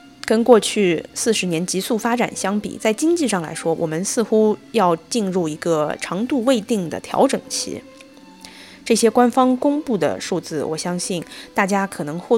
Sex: female